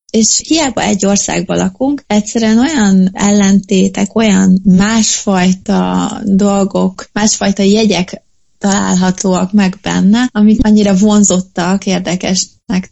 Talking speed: 95 wpm